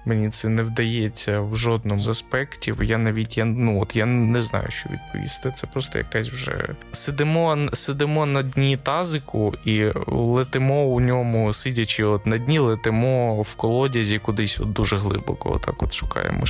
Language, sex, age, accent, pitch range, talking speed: Ukrainian, male, 20-39, native, 110-135 Hz, 140 wpm